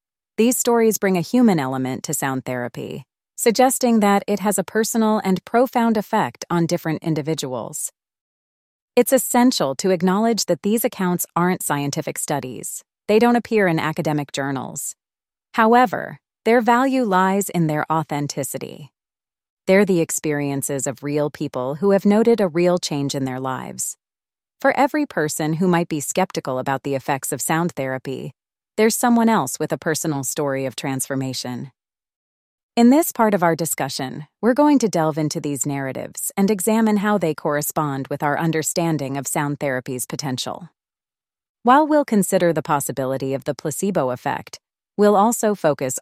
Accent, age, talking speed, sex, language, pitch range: American, 30-49, 155 wpm, female, English, 140-205 Hz